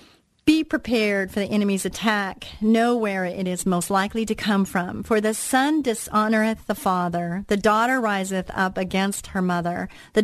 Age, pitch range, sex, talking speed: 40-59, 175-220 Hz, female, 170 wpm